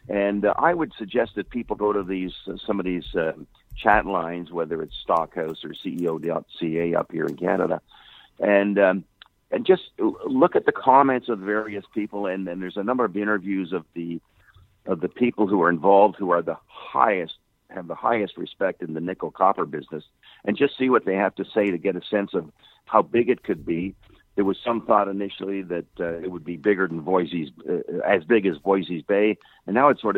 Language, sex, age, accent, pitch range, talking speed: English, male, 50-69, American, 85-105 Hz, 210 wpm